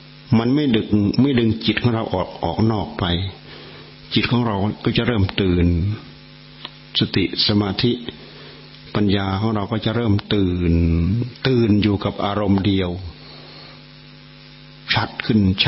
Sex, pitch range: male, 100-120 Hz